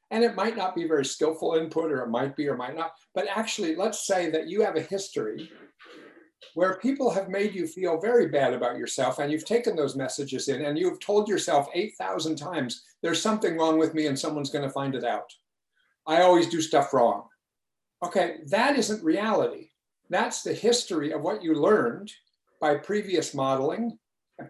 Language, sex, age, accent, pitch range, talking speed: English, male, 60-79, American, 145-215 Hz, 190 wpm